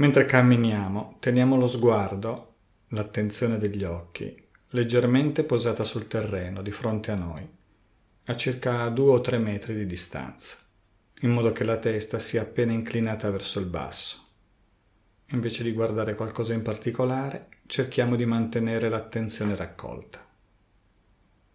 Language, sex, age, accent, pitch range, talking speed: Italian, male, 40-59, native, 105-120 Hz, 130 wpm